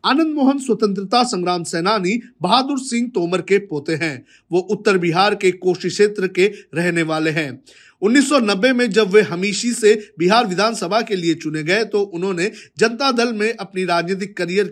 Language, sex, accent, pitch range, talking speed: Hindi, male, native, 170-220 Hz, 165 wpm